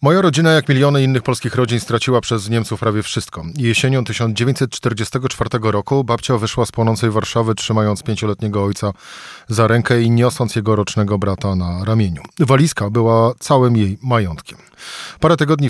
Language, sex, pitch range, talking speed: Polish, male, 105-130 Hz, 150 wpm